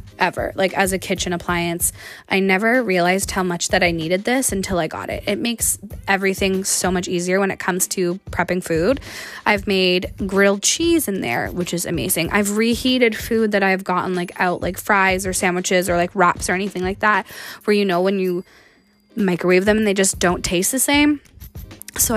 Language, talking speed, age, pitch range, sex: English, 200 wpm, 20-39, 185-220 Hz, female